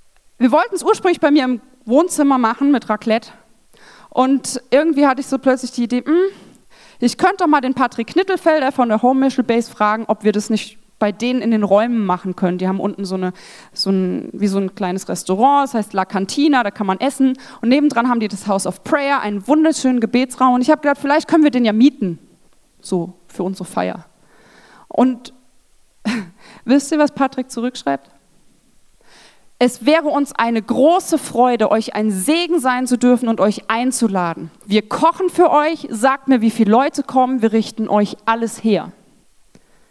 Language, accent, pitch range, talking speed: German, German, 210-275 Hz, 185 wpm